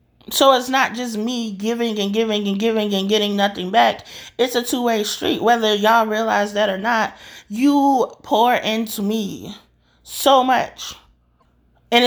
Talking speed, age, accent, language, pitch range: 155 wpm, 30-49, American, English, 205-240 Hz